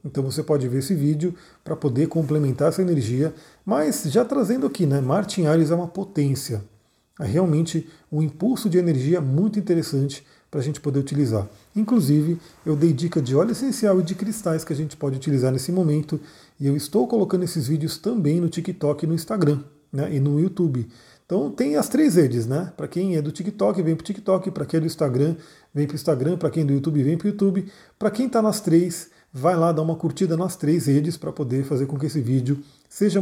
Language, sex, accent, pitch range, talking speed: Portuguese, male, Brazilian, 140-180 Hz, 215 wpm